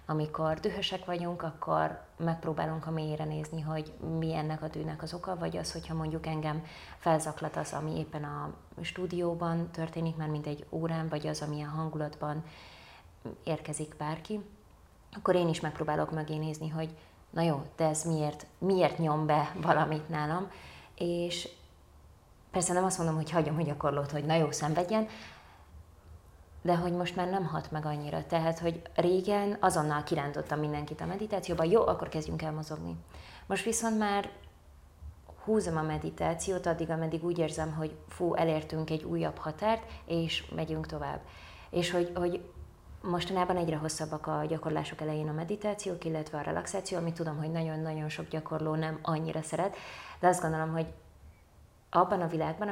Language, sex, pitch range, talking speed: Hungarian, female, 150-170 Hz, 155 wpm